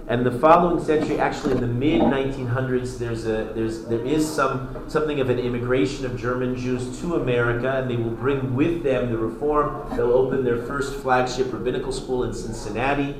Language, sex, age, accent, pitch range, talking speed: English, male, 40-59, American, 120-140 Hz, 180 wpm